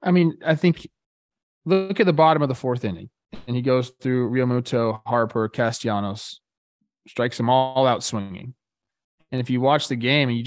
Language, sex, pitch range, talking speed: English, male, 120-150 Hz, 185 wpm